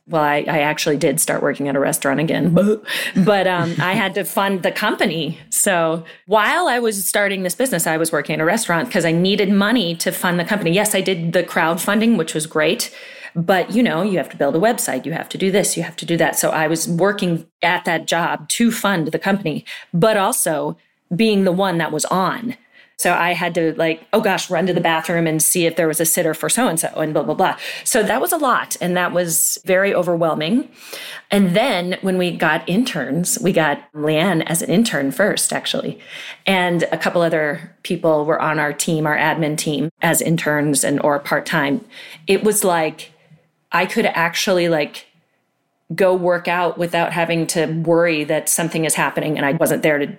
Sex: female